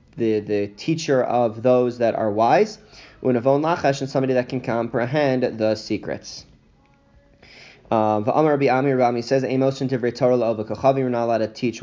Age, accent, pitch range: 20-39, American, 110-135 Hz